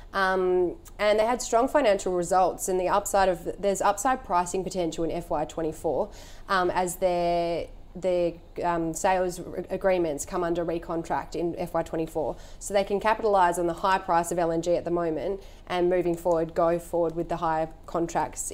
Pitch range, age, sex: 165-185 Hz, 20-39, female